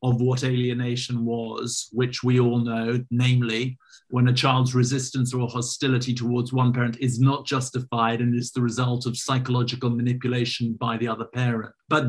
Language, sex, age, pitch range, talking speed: English, male, 50-69, 120-135 Hz, 165 wpm